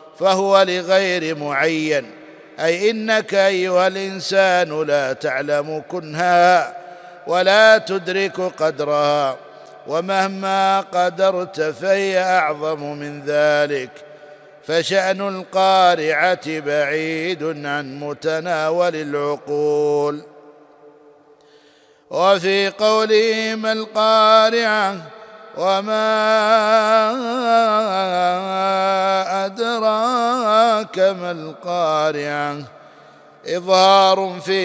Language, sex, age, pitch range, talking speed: Arabic, male, 50-69, 160-195 Hz, 60 wpm